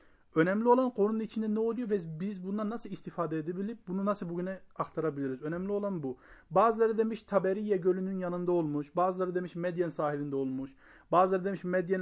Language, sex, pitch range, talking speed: Turkish, male, 155-200 Hz, 165 wpm